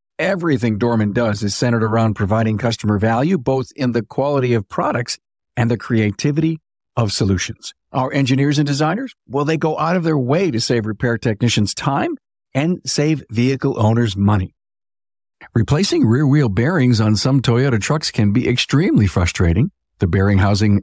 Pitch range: 105-140 Hz